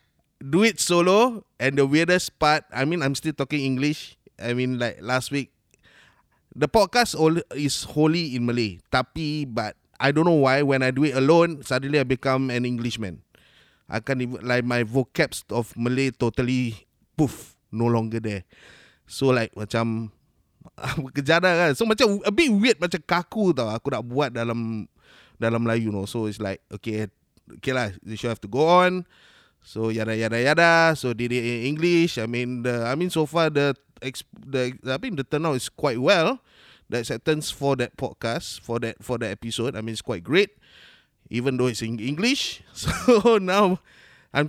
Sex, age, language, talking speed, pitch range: male, 20-39, Malay, 180 wpm, 120-165 Hz